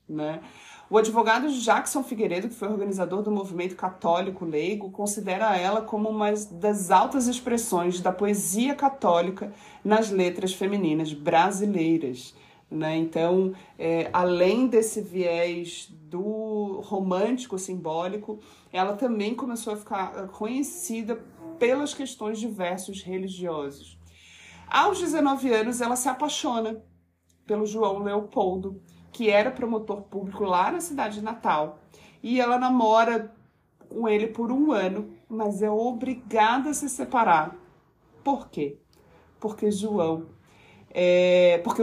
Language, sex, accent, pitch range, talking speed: Portuguese, male, Brazilian, 180-230 Hz, 115 wpm